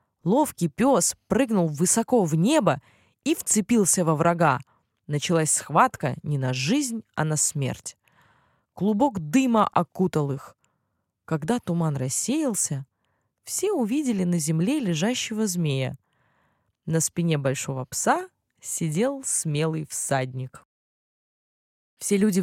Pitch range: 145-210 Hz